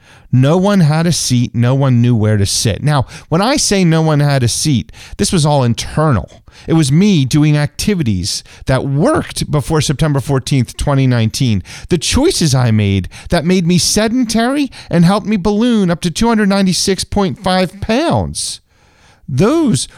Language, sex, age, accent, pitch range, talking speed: English, male, 40-59, American, 120-185 Hz, 155 wpm